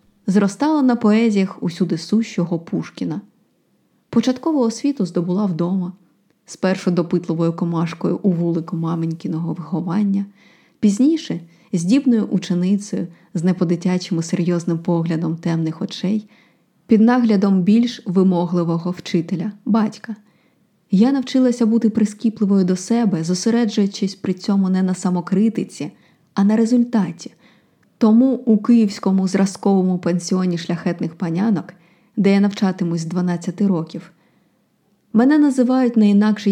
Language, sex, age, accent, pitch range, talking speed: Ukrainian, female, 20-39, native, 180-220 Hz, 105 wpm